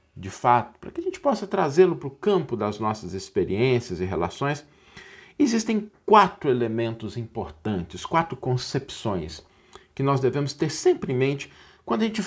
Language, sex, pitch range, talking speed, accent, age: Portuguese, male, 105-150 Hz, 155 wpm, Brazilian, 50-69